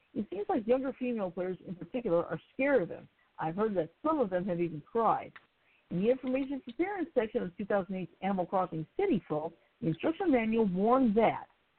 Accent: American